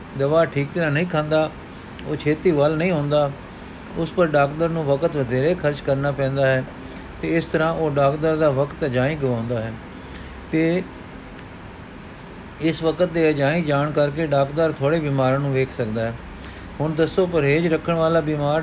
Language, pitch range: Punjabi, 140-165 Hz